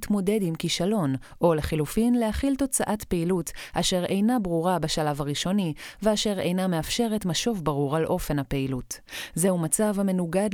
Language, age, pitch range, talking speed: Hebrew, 30-49, 165-215 Hz, 135 wpm